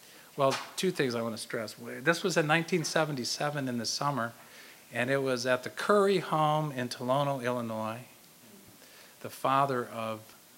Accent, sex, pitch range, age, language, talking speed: American, male, 120-145 Hz, 40-59, English, 155 wpm